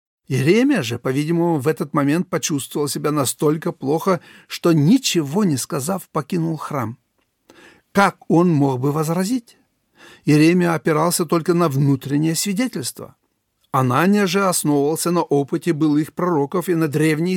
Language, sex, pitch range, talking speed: Russian, male, 140-175 Hz, 130 wpm